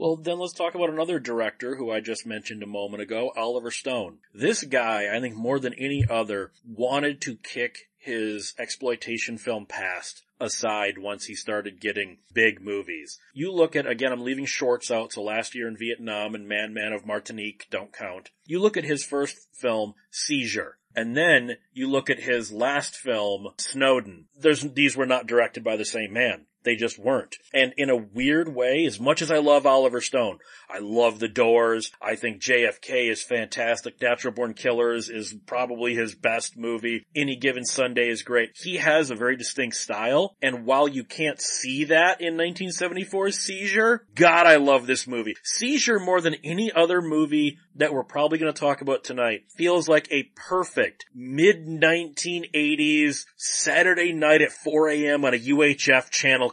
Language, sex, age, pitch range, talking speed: English, male, 30-49, 115-160 Hz, 175 wpm